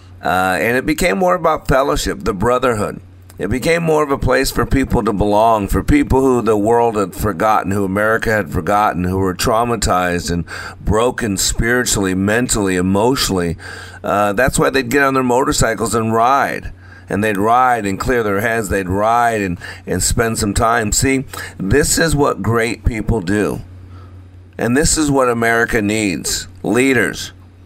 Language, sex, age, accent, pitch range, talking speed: English, male, 50-69, American, 95-130 Hz, 165 wpm